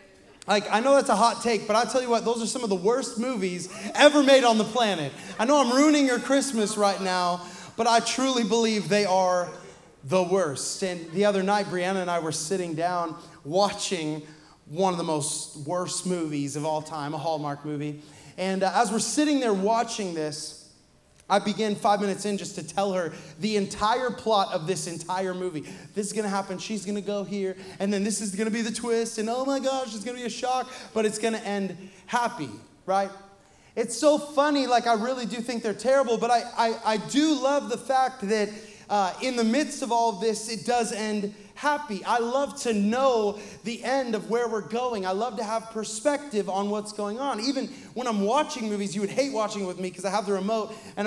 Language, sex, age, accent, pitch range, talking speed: English, male, 20-39, American, 195-250 Hz, 225 wpm